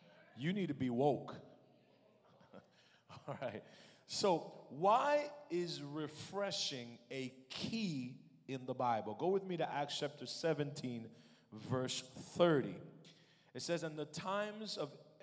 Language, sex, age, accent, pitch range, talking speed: English, male, 40-59, American, 130-180 Hz, 120 wpm